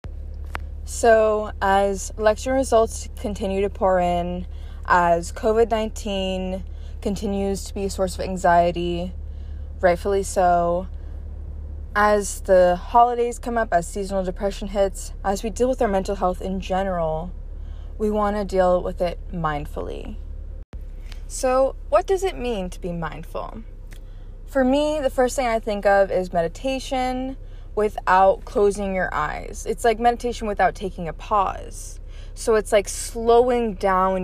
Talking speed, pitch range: 135 wpm, 155-215 Hz